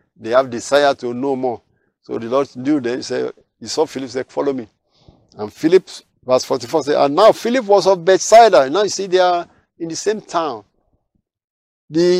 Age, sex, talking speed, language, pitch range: 50-69, male, 195 wpm, English, 135-205 Hz